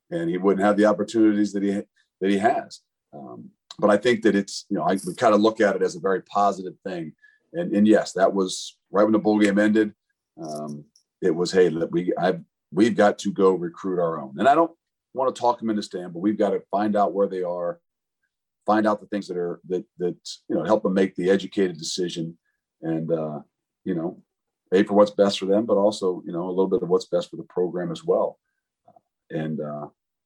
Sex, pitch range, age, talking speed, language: male, 90-105 Hz, 40-59, 230 wpm, English